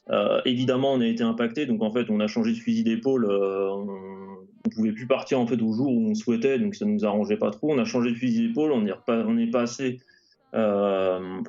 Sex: male